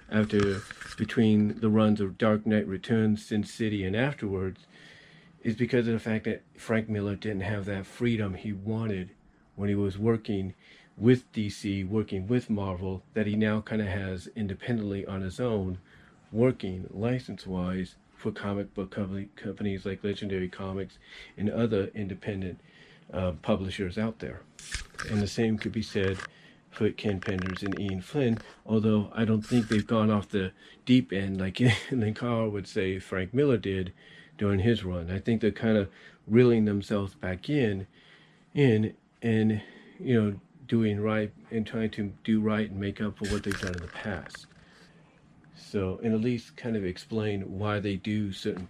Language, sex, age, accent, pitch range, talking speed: English, male, 40-59, American, 95-110 Hz, 165 wpm